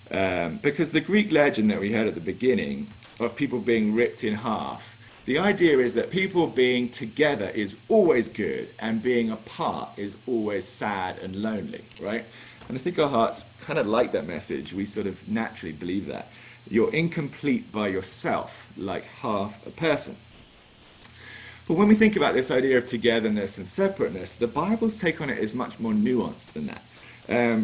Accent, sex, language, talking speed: British, male, English, 180 wpm